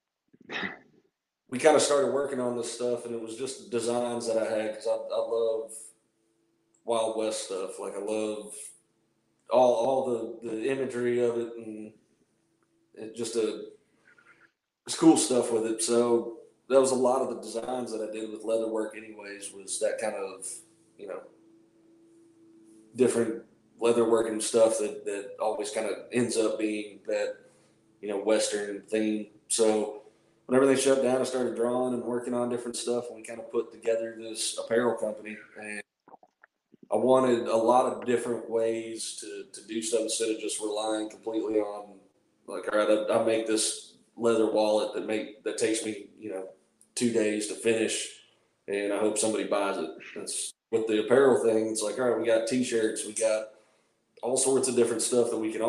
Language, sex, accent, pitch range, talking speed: English, male, American, 110-125 Hz, 180 wpm